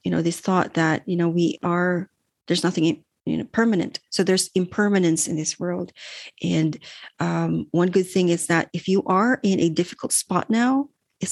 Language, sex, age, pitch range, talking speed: English, female, 30-49, 165-185 Hz, 190 wpm